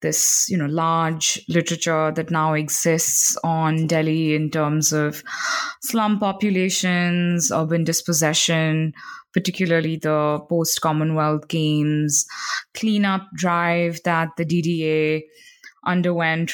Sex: female